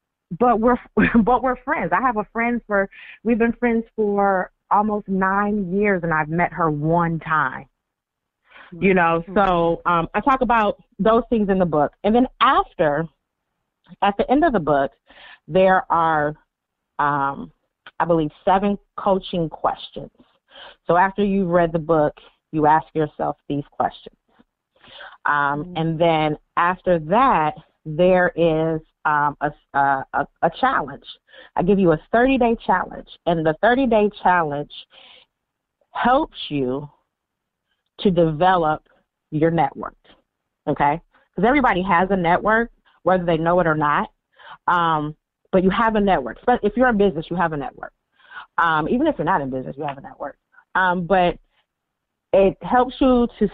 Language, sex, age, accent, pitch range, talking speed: English, female, 30-49, American, 160-210 Hz, 150 wpm